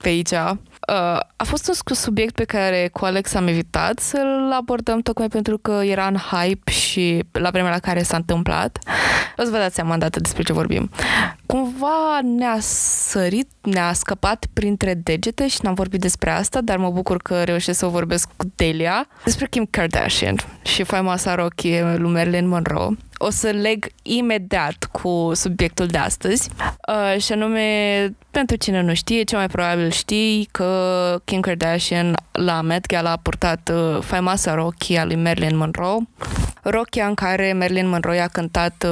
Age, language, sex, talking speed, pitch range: 20-39, Romanian, female, 170 wpm, 170-210 Hz